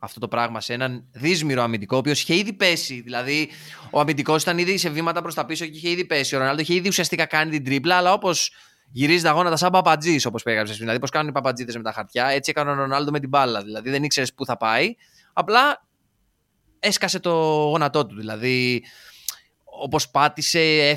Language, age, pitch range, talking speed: Greek, 20-39, 125-170 Hz, 205 wpm